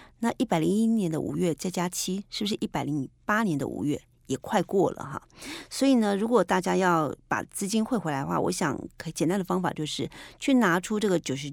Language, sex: Chinese, female